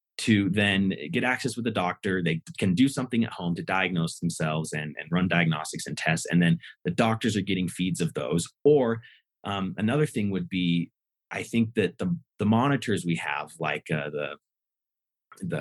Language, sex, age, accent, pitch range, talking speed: English, male, 30-49, American, 90-120 Hz, 190 wpm